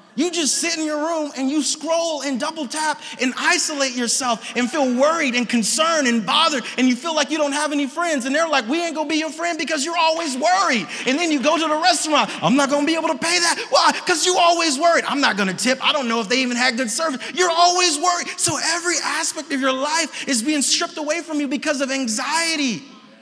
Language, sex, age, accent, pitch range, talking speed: English, male, 30-49, American, 230-305 Hz, 255 wpm